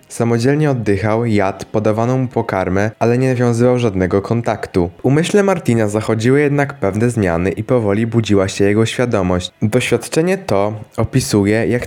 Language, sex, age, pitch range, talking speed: Polish, male, 20-39, 105-130 Hz, 140 wpm